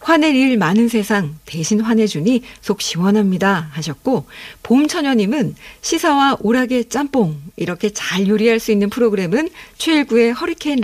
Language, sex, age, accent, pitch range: Korean, female, 50-69, native, 195-265 Hz